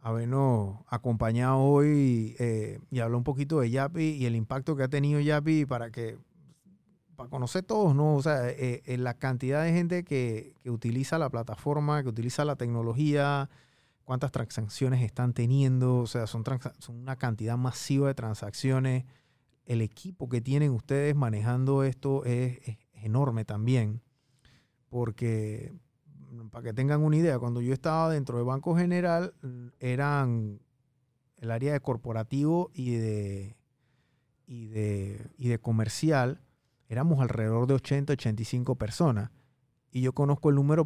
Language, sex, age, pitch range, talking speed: Spanish, male, 30-49, 120-145 Hz, 150 wpm